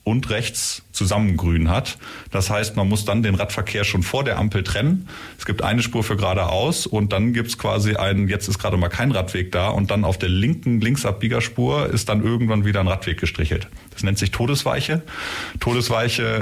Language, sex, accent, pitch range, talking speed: German, male, German, 95-115 Hz, 195 wpm